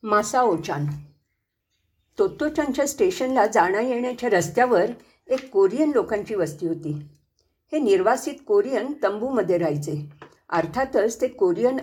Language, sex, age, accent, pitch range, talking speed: English, female, 50-69, Indian, 195-300 Hz, 105 wpm